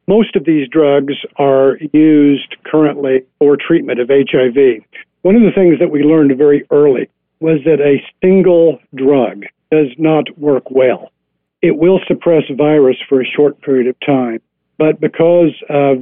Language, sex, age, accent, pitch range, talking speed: English, male, 50-69, American, 130-150 Hz, 155 wpm